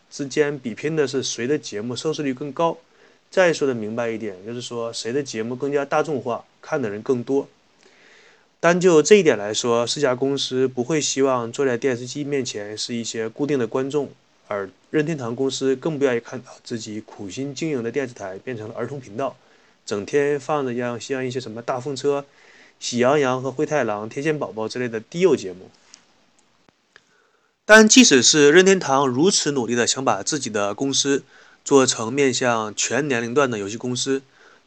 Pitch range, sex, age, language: 115-145 Hz, male, 20-39, Chinese